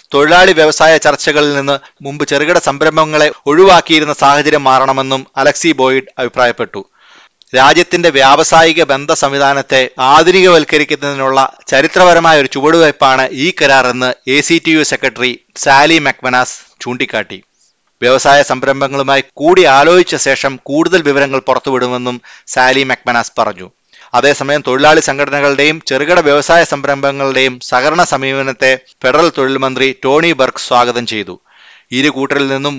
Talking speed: 105 wpm